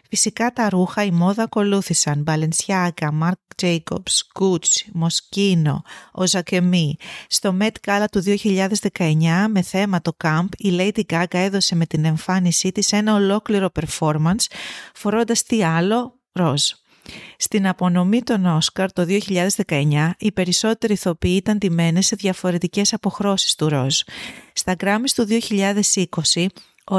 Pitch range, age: 170-205 Hz, 30-49